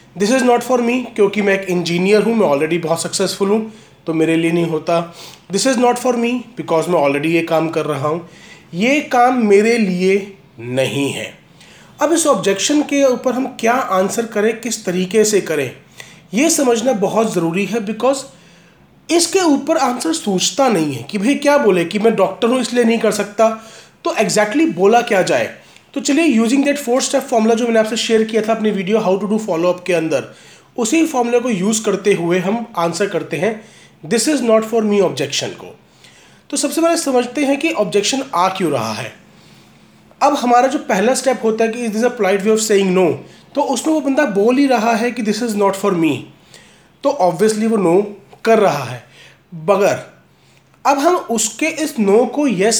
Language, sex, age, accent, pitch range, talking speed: Hindi, male, 30-49, native, 190-255 Hz, 205 wpm